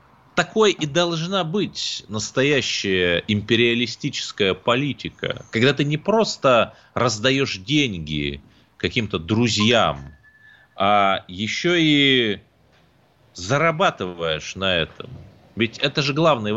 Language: Russian